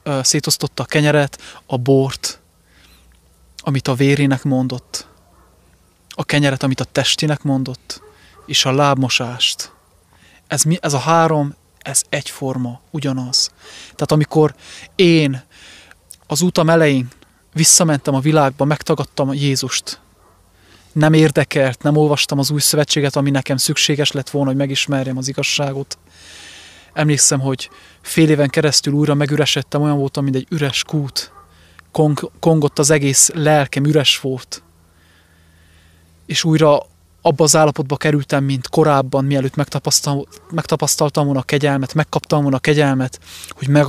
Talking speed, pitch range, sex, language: 125 wpm, 130-150 Hz, male, English